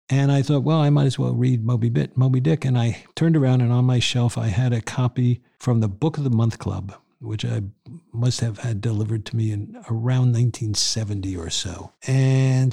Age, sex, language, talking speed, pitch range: 50-69, male, English, 215 wpm, 110-130 Hz